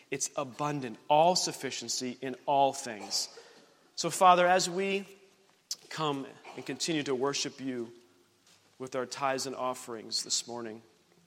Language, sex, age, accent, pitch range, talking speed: English, male, 40-59, American, 120-145 Hz, 130 wpm